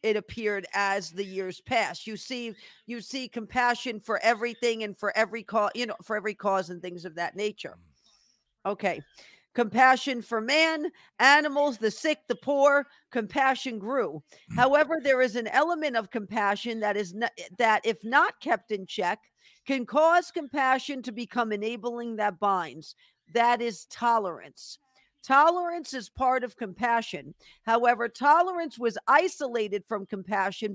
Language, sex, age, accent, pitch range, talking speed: English, female, 50-69, American, 215-270 Hz, 145 wpm